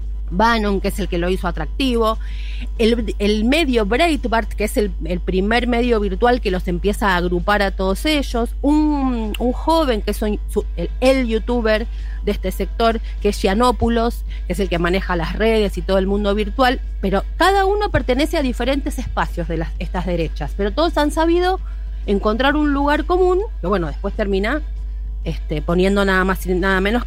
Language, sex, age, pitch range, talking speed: Spanish, female, 30-49, 180-265 Hz, 190 wpm